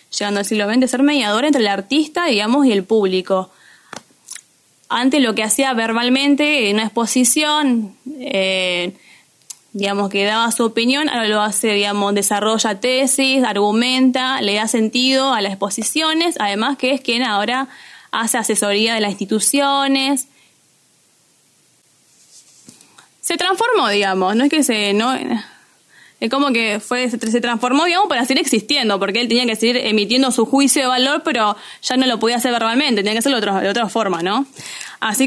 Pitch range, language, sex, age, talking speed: 215-270 Hz, Spanish, female, 10-29, 160 wpm